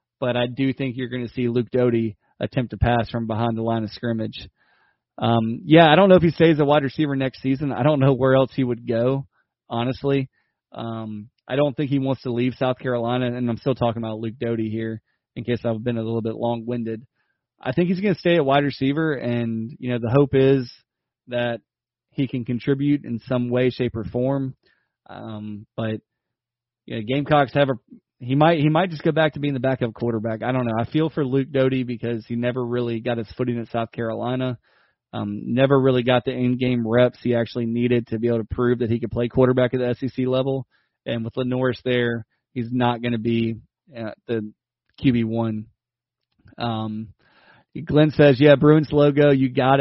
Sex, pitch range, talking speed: male, 115-135 Hz, 210 wpm